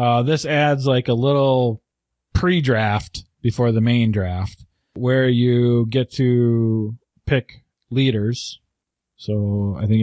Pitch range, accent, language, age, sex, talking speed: 115-145 Hz, American, English, 20-39, male, 120 wpm